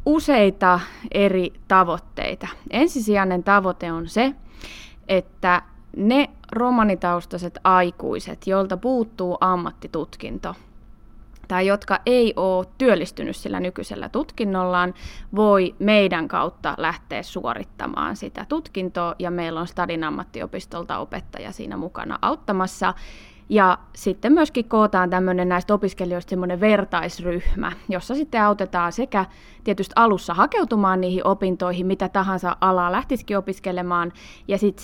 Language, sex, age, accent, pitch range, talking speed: Finnish, female, 20-39, native, 180-210 Hz, 105 wpm